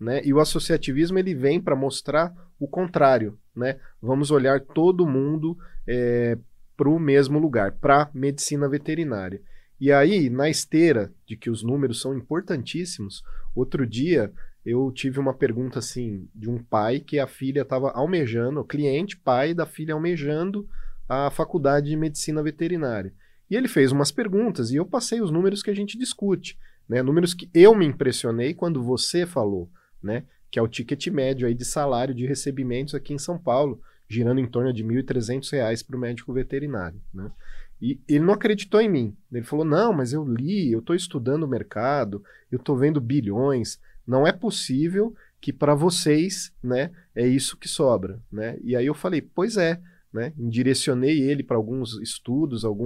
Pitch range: 120-160 Hz